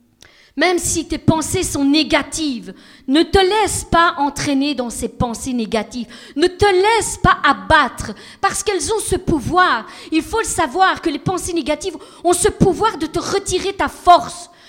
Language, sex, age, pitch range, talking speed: French, female, 40-59, 255-350 Hz, 170 wpm